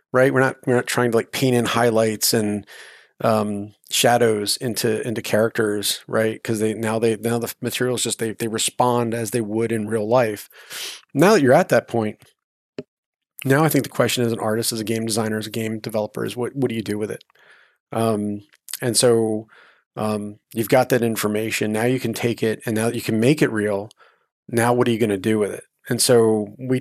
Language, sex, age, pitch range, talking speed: English, male, 30-49, 110-120 Hz, 220 wpm